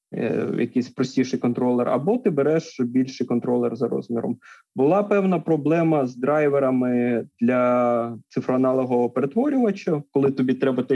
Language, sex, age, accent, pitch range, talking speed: Ukrainian, male, 20-39, native, 130-180 Hz, 120 wpm